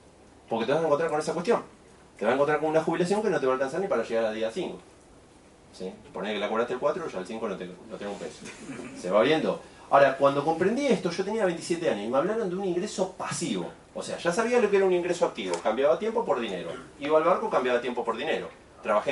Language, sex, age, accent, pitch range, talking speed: Spanish, male, 30-49, Argentinian, 135-215 Hz, 255 wpm